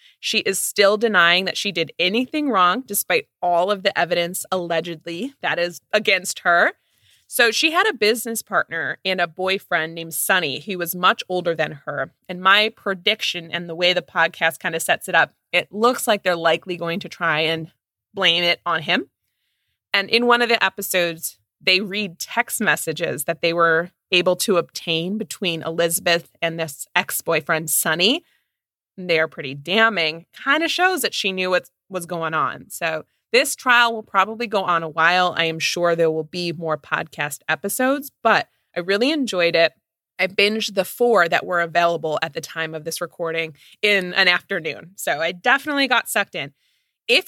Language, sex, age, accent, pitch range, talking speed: English, female, 20-39, American, 165-215 Hz, 180 wpm